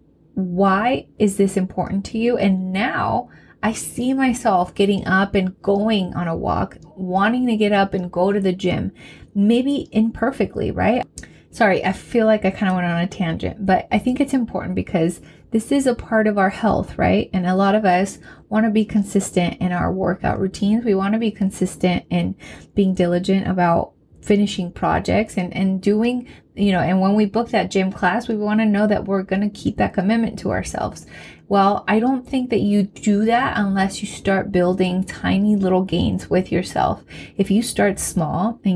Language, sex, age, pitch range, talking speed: English, female, 20-39, 185-220 Hz, 195 wpm